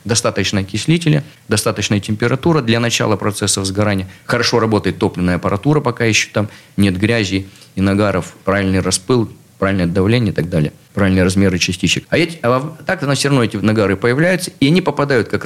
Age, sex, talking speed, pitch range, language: 30-49, male, 160 wpm, 100-130 Hz, Russian